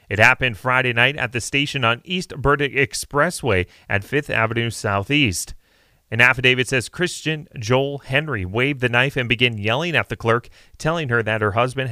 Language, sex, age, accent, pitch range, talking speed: English, male, 30-49, American, 115-150 Hz, 175 wpm